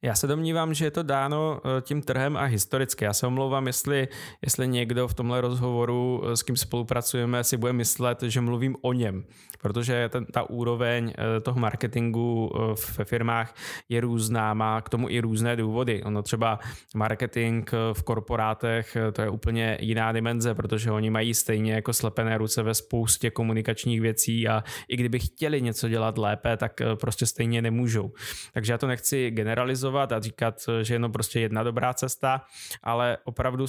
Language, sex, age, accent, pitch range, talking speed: Czech, male, 20-39, native, 110-125 Hz, 165 wpm